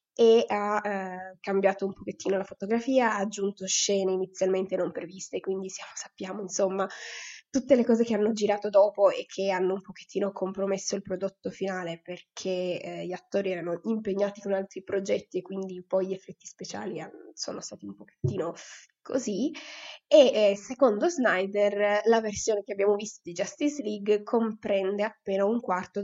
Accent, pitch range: native, 185-215 Hz